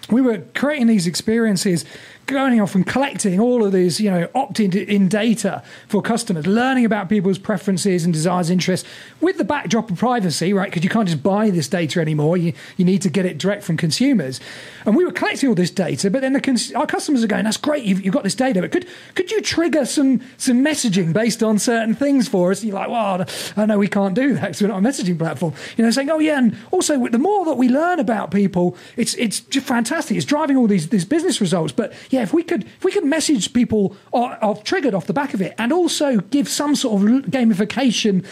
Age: 40-59